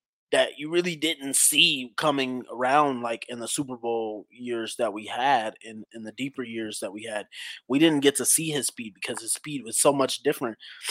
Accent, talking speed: American, 210 wpm